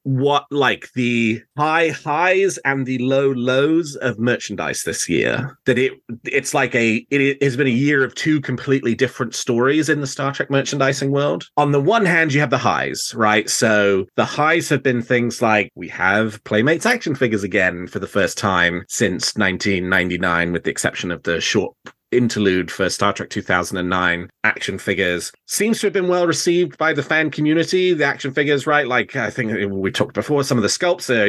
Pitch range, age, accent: 110-150 Hz, 30-49, British